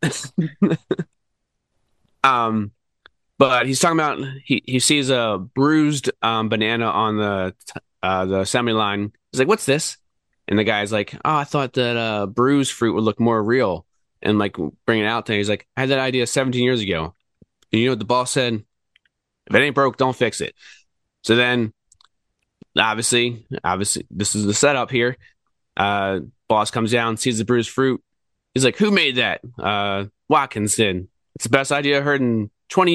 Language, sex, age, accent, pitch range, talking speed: English, male, 20-39, American, 100-125 Hz, 180 wpm